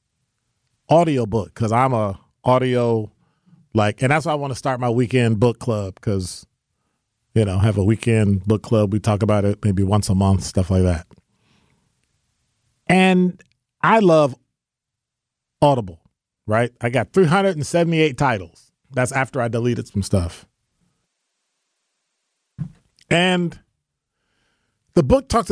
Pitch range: 110-150 Hz